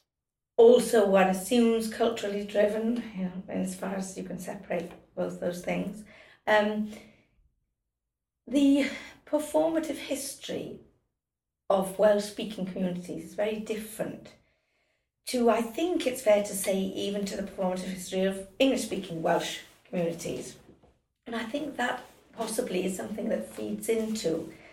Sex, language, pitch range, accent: female, English, 180-225 Hz, British